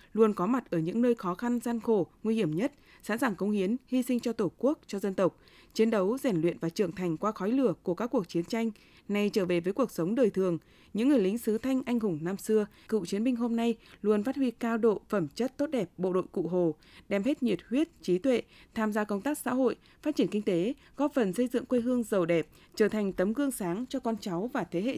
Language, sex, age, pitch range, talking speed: Vietnamese, female, 20-39, 185-250 Hz, 265 wpm